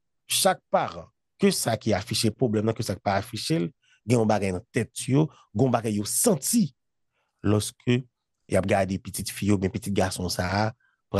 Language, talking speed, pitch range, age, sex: English, 170 wpm, 105-135 Hz, 30-49, male